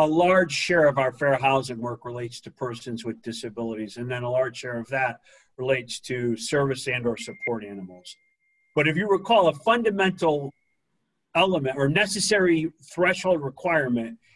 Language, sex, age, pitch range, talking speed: English, male, 50-69, 130-170 Hz, 160 wpm